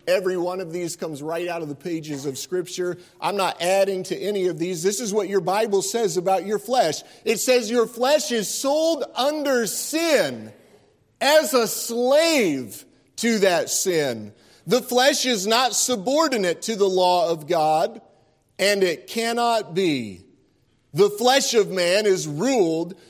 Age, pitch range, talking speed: 40-59, 180-230 Hz, 160 wpm